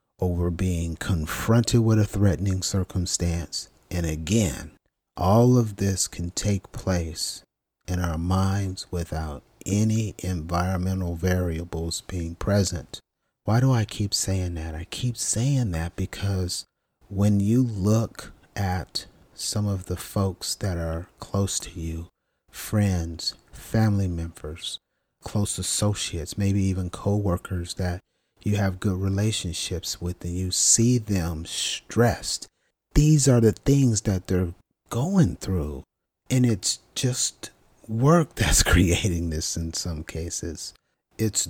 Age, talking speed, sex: 40-59, 125 wpm, male